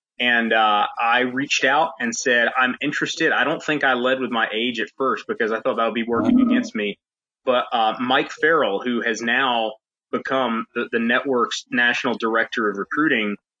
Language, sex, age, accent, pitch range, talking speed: English, male, 20-39, American, 115-135 Hz, 190 wpm